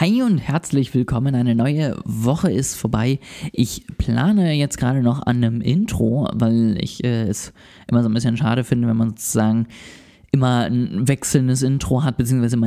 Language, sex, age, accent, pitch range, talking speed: German, male, 20-39, German, 115-140 Hz, 175 wpm